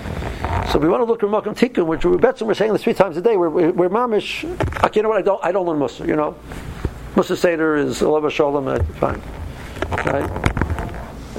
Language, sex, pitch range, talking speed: English, male, 175-235 Hz, 205 wpm